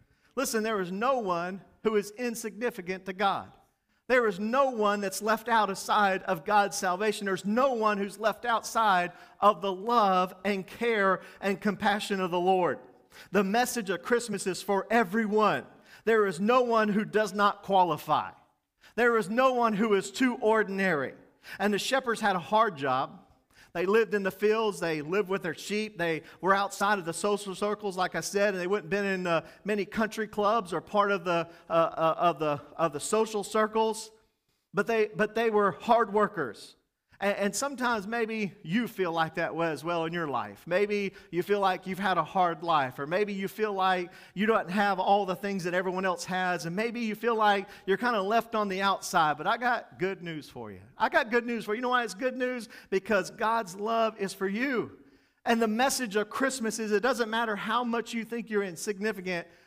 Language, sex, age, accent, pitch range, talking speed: English, male, 40-59, American, 185-225 Hz, 205 wpm